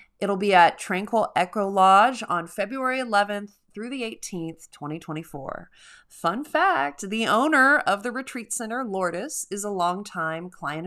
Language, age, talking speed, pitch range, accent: English, 30-49, 145 wpm, 175-225 Hz, American